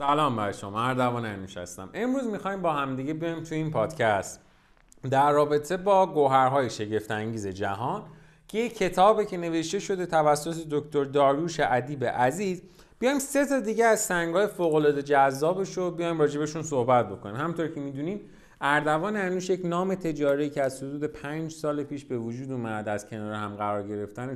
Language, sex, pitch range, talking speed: Persian, male, 120-165 Hz, 160 wpm